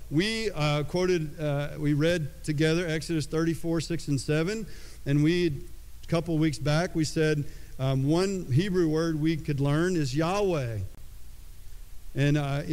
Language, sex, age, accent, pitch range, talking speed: English, male, 50-69, American, 140-165 Hz, 145 wpm